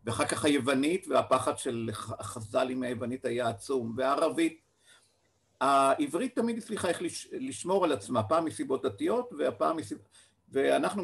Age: 50-69